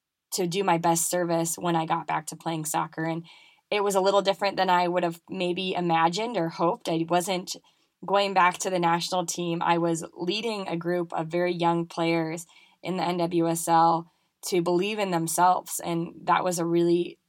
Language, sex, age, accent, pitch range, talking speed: English, female, 10-29, American, 170-185 Hz, 190 wpm